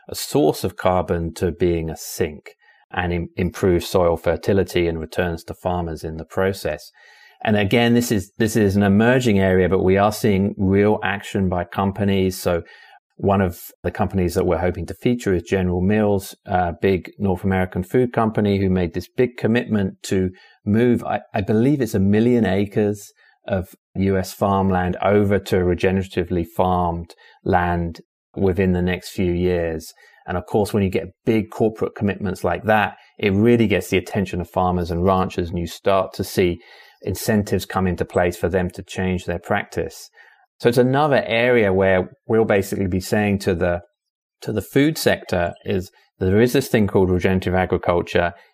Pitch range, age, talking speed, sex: 90-105 Hz, 30-49, 175 wpm, male